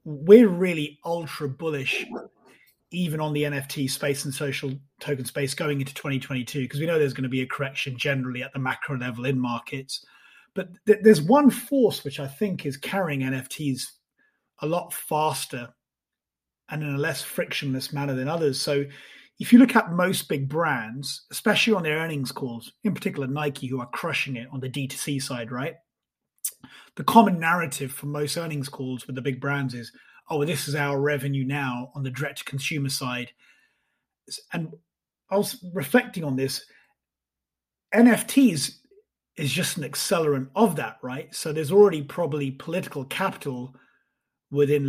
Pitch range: 130-160 Hz